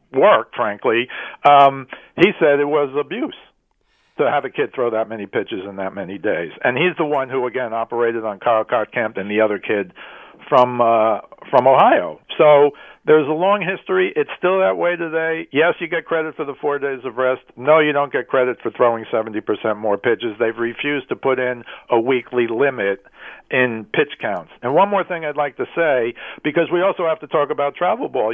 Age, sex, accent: 60-79, male, American